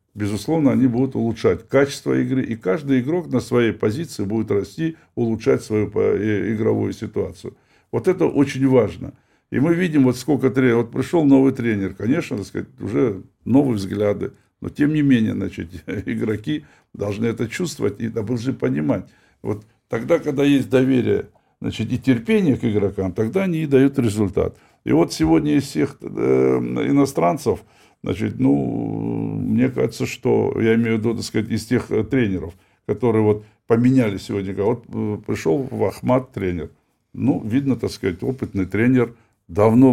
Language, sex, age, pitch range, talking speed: Russian, male, 60-79, 105-130 Hz, 150 wpm